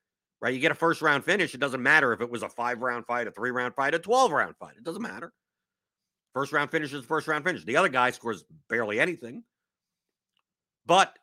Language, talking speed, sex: English, 190 wpm, male